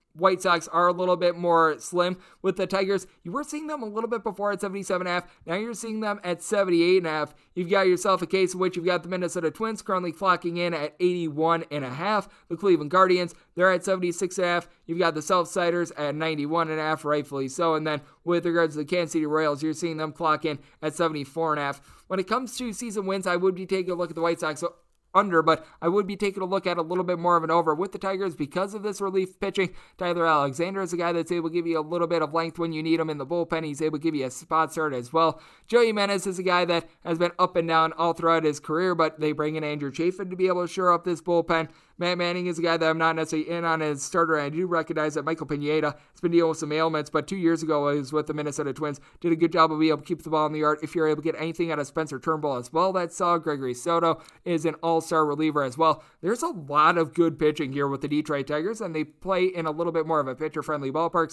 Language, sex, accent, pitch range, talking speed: English, male, American, 155-180 Hz, 265 wpm